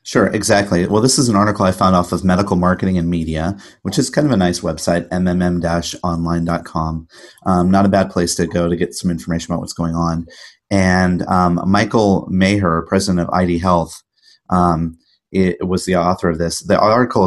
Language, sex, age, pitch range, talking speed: English, male, 30-49, 90-100 Hz, 190 wpm